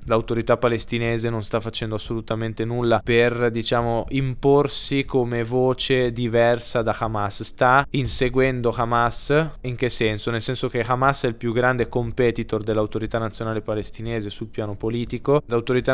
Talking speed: 140 wpm